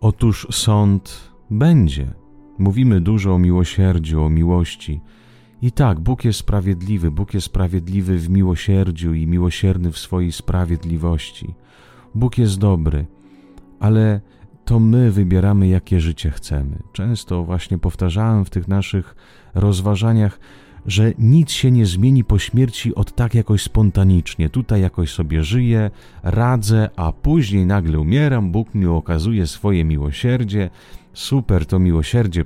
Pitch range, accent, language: 85-110 Hz, Polish, Italian